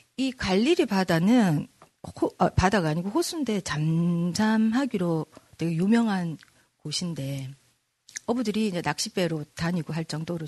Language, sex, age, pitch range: Korean, female, 40-59, 150-205 Hz